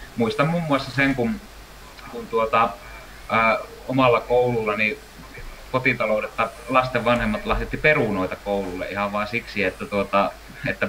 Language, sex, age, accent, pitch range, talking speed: Finnish, male, 30-49, native, 100-130 Hz, 125 wpm